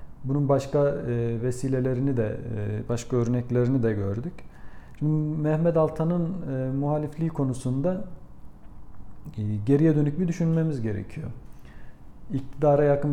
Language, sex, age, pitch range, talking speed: Turkish, male, 40-59, 120-140 Hz, 90 wpm